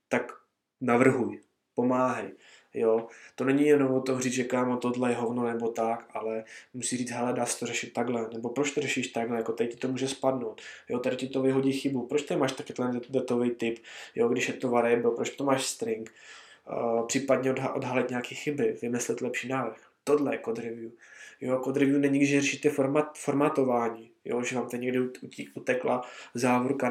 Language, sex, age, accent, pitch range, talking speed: Czech, male, 20-39, native, 120-130 Hz, 180 wpm